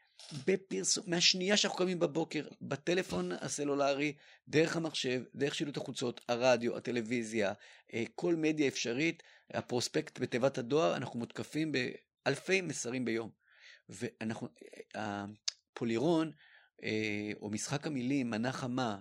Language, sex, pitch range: Hebrew, male, 110-155 Hz